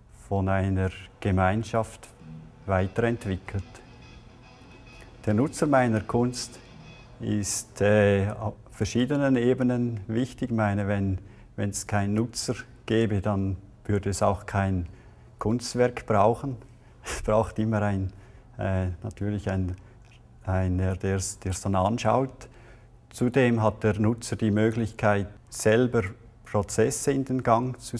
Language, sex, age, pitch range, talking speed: German, male, 50-69, 100-120 Hz, 110 wpm